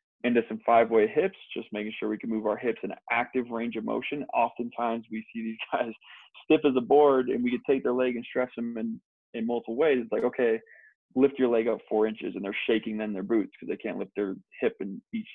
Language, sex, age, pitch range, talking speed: English, male, 20-39, 110-125 Hz, 240 wpm